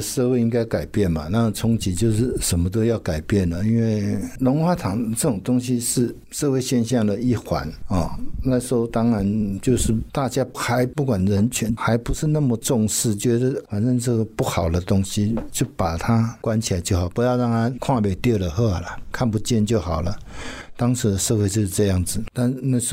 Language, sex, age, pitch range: Chinese, male, 60-79, 95-120 Hz